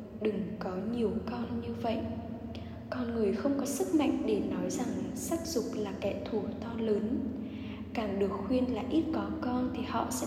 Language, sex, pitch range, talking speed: Vietnamese, female, 215-265 Hz, 185 wpm